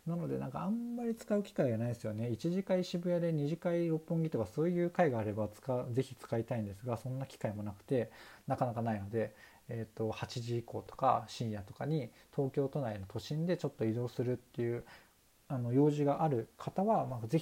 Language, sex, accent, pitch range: Japanese, male, native, 115-160 Hz